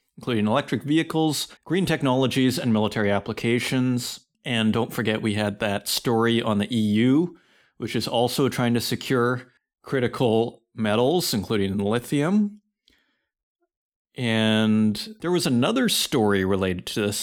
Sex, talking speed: male, 125 wpm